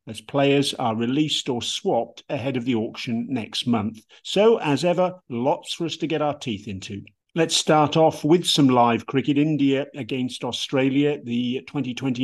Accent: British